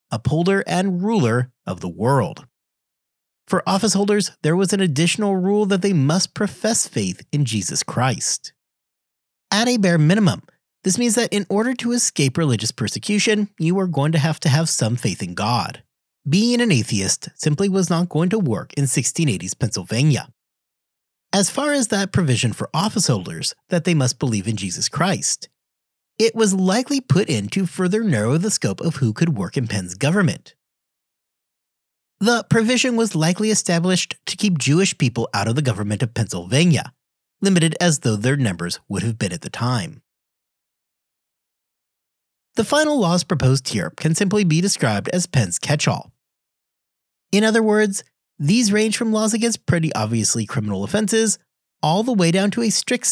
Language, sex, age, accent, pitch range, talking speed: English, male, 30-49, American, 130-205 Hz, 165 wpm